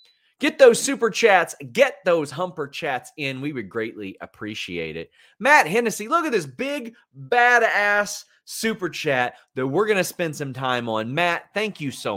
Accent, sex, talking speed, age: American, male, 175 wpm, 30-49